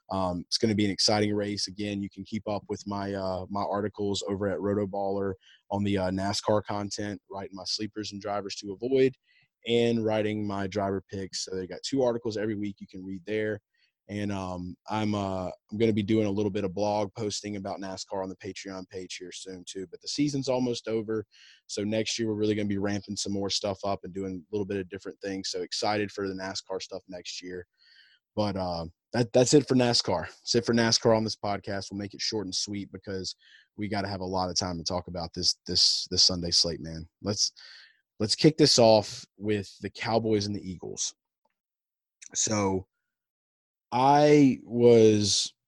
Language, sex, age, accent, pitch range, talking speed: English, male, 20-39, American, 95-110 Hz, 210 wpm